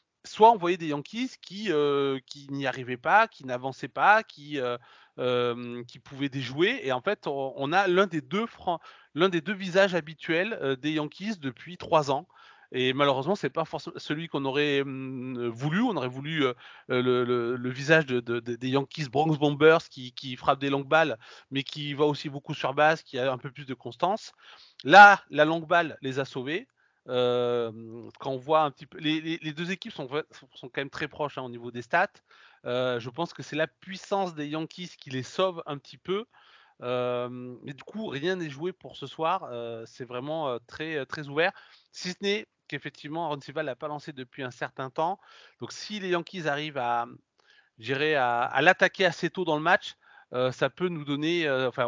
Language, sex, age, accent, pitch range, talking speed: French, male, 30-49, French, 130-165 Hz, 210 wpm